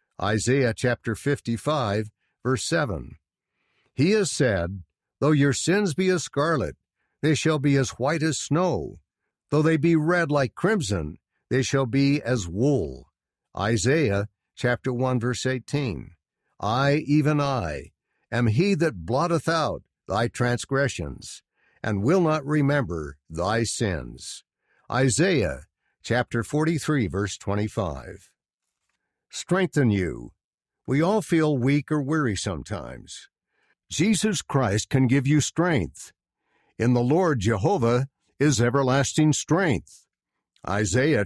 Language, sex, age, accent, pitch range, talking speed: English, male, 60-79, American, 110-155 Hz, 120 wpm